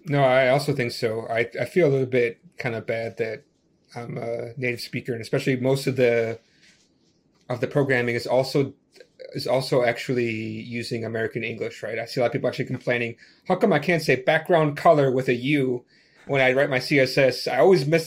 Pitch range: 120-145 Hz